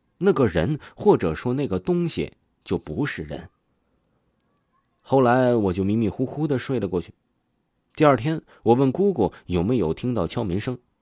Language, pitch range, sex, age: Chinese, 90-125 Hz, male, 30-49